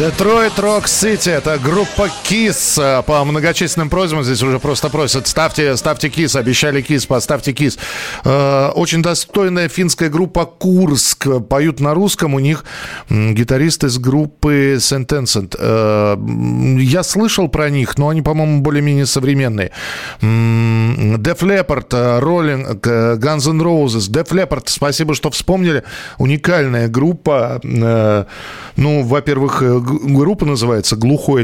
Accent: native